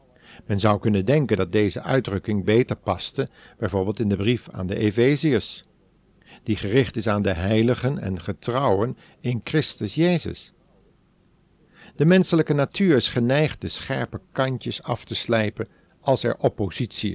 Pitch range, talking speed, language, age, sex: 110-155 Hz, 145 wpm, Dutch, 50-69, male